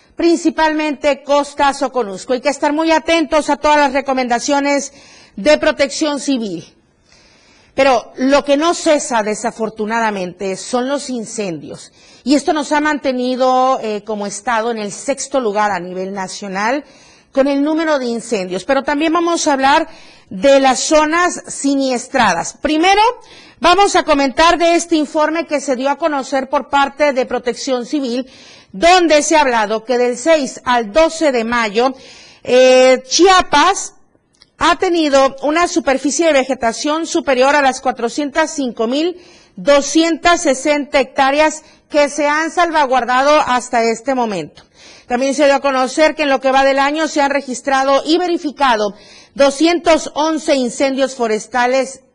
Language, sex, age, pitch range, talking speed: Spanish, female, 40-59, 250-305 Hz, 140 wpm